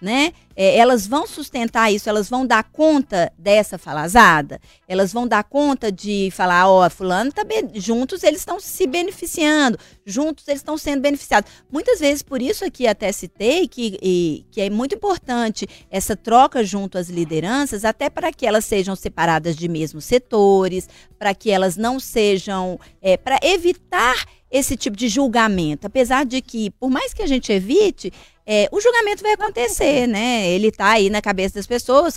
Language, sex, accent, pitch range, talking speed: Portuguese, female, Brazilian, 200-300 Hz, 175 wpm